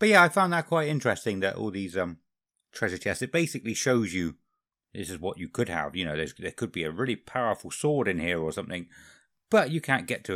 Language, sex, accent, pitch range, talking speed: English, male, British, 90-145 Hz, 230 wpm